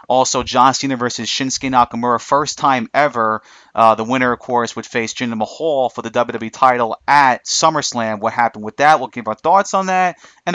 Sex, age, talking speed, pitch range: male, 30-49, 200 wpm, 120-145 Hz